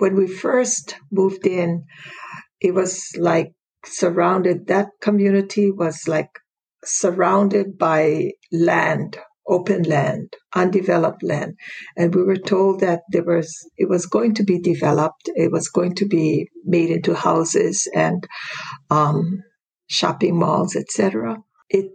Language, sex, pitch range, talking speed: English, female, 170-205 Hz, 130 wpm